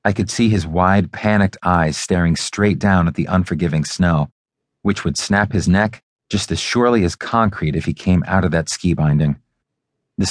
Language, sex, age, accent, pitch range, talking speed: English, male, 30-49, American, 90-120 Hz, 190 wpm